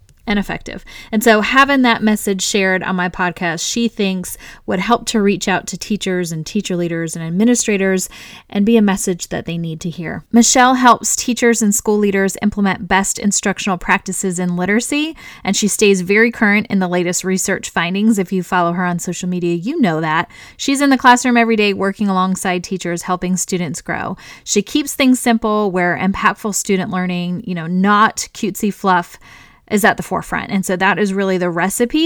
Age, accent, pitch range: 30-49, American, 185-230 Hz